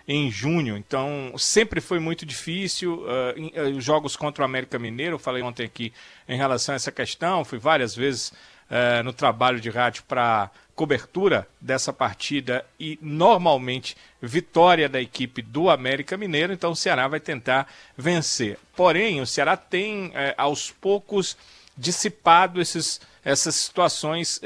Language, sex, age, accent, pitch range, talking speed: Portuguese, male, 40-59, Brazilian, 135-170 Hz, 150 wpm